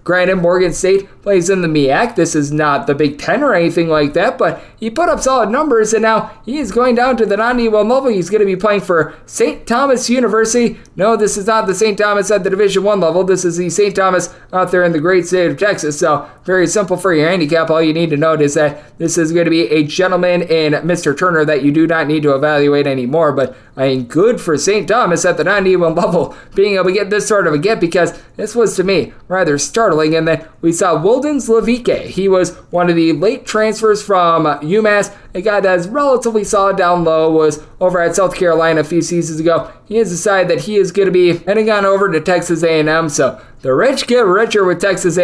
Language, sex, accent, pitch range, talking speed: English, male, American, 160-210 Hz, 235 wpm